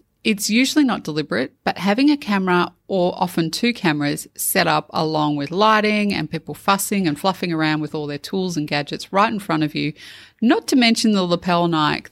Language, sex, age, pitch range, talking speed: English, female, 30-49, 155-200 Hz, 200 wpm